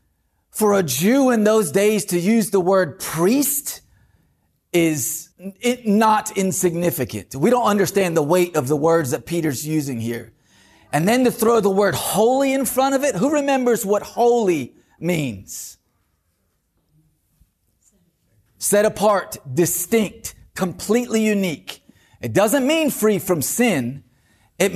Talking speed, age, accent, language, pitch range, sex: 130 wpm, 30-49, American, English, 140-210 Hz, male